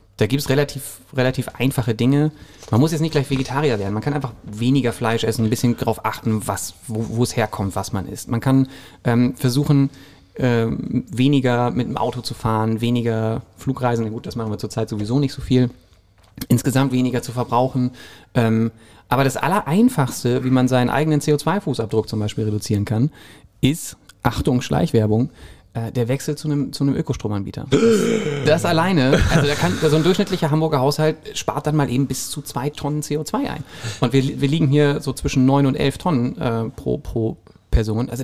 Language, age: German, 30-49